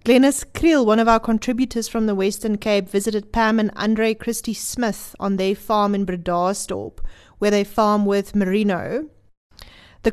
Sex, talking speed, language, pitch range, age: female, 155 wpm, English, 200-230 Hz, 30-49